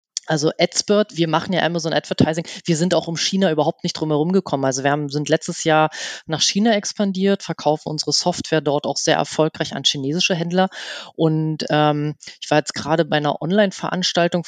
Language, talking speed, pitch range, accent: German, 185 wpm, 155-185 Hz, German